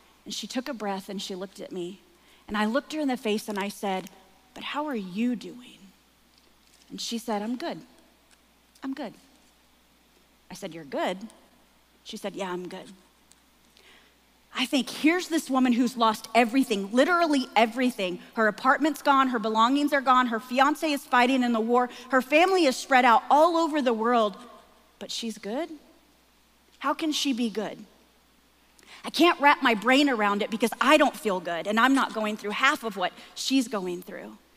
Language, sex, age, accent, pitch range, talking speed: English, female, 30-49, American, 225-280 Hz, 180 wpm